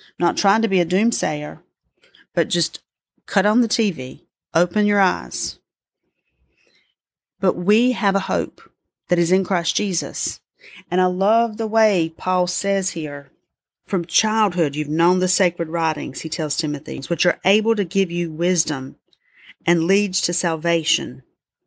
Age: 40-59